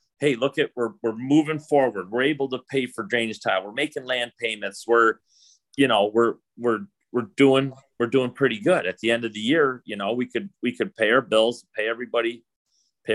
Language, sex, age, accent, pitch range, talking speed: English, male, 40-59, American, 110-130 Hz, 215 wpm